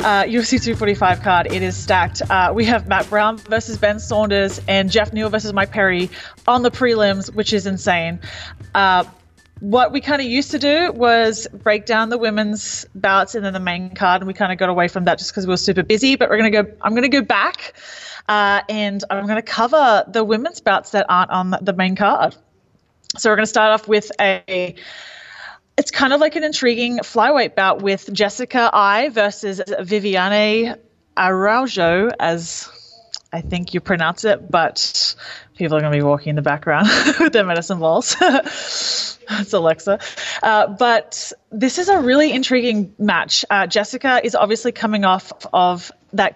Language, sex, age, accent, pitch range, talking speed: English, female, 30-49, Australian, 185-230 Hz, 185 wpm